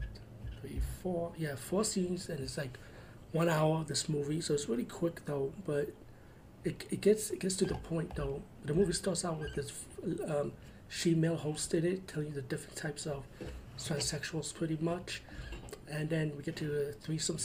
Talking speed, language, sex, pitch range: 185 wpm, English, male, 135-165 Hz